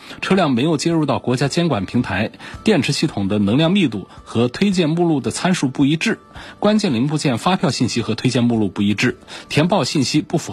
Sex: male